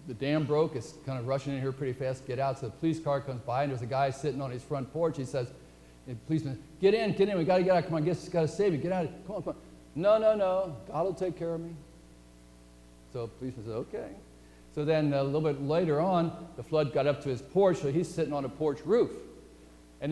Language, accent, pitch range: English, American, 125-175 Hz